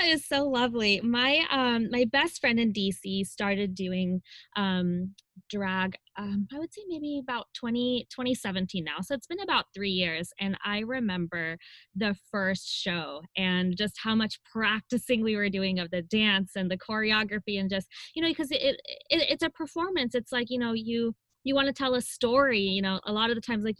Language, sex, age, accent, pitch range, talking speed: English, female, 20-39, American, 185-235 Hz, 195 wpm